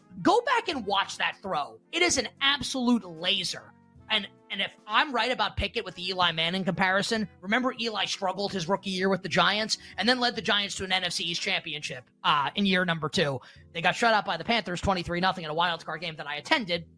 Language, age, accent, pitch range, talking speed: English, 20-39, American, 170-220 Hz, 225 wpm